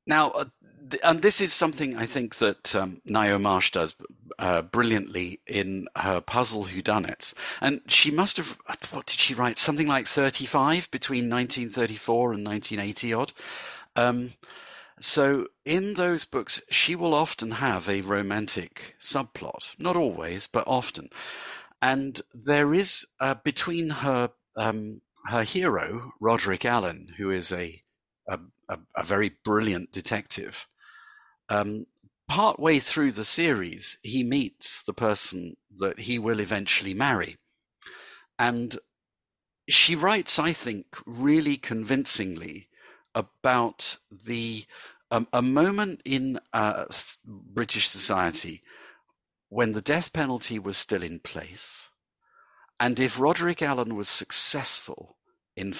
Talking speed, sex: 125 wpm, male